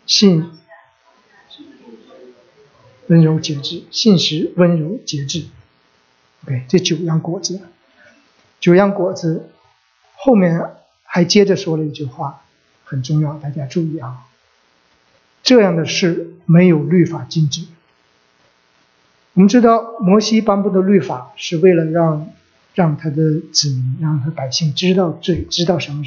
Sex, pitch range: male, 115-175 Hz